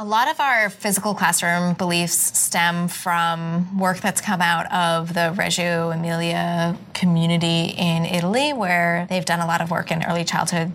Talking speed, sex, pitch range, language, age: 165 wpm, female, 170-195 Hz, English, 20-39